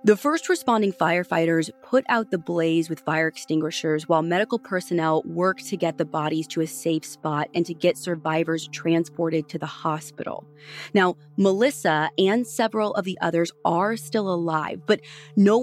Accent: American